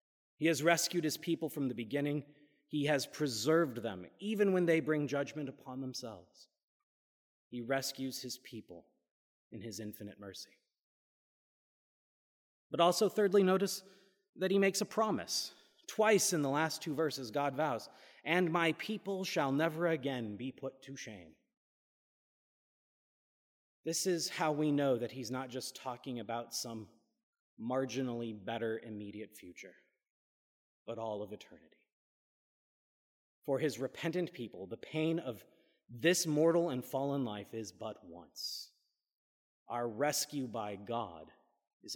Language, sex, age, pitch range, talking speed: English, male, 30-49, 125-180 Hz, 135 wpm